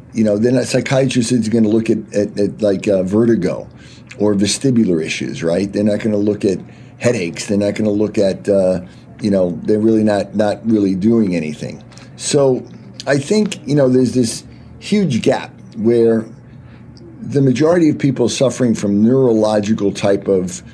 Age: 50-69